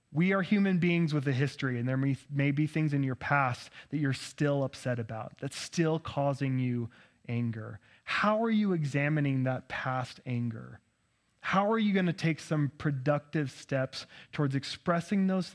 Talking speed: 170 wpm